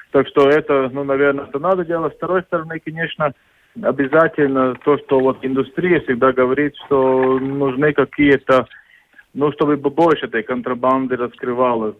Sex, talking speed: male, 140 wpm